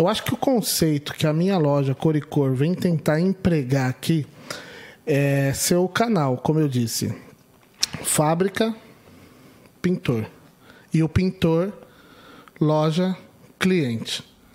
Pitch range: 140-180 Hz